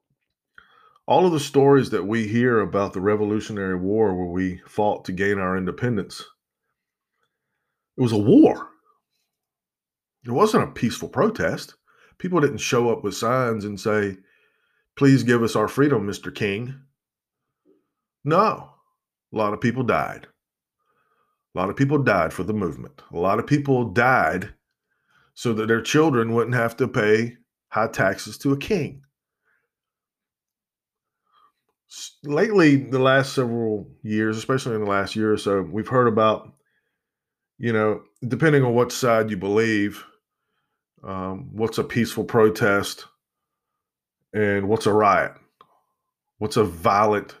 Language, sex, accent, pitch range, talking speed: English, male, American, 105-135 Hz, 140 wpm